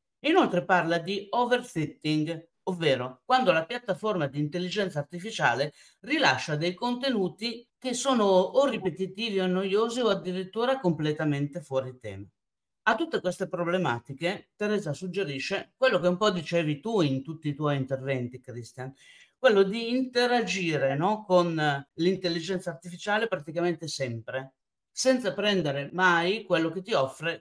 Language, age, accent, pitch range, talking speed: Italian, 50-69, native, 145-195 Hz, 125 wpm